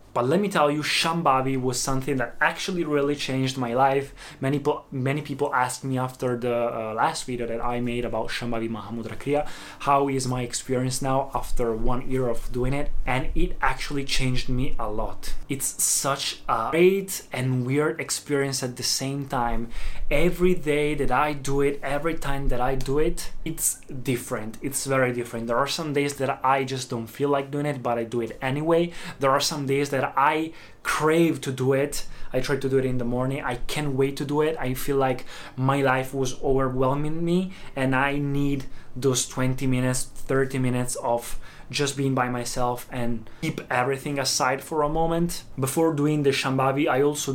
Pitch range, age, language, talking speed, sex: 125-145 Hz, 20-39, Italian, 195 wpm, male